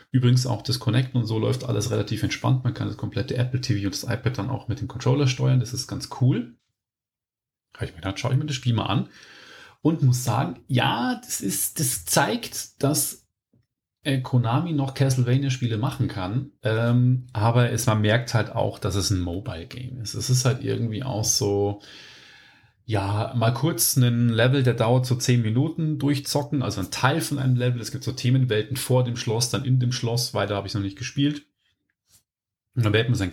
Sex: male